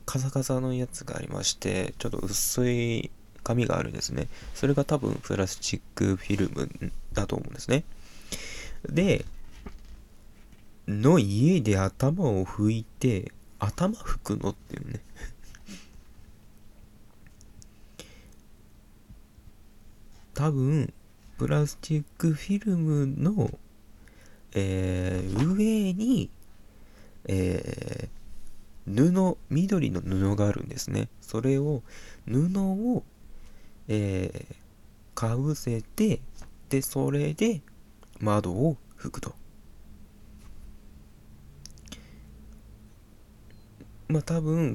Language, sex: Japanese, male